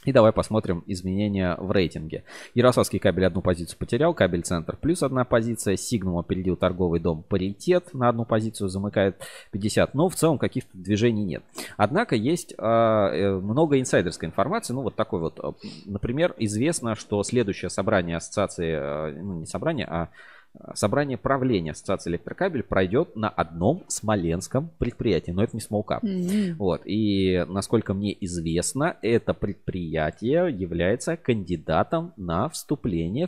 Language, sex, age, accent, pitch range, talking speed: Russian, male, 20-39, native, 90-120 Hz, 135 wpm